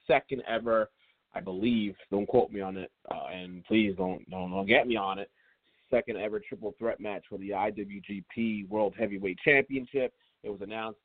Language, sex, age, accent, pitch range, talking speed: English, male, 30-49, American, 105-135 Hz, 180 wpm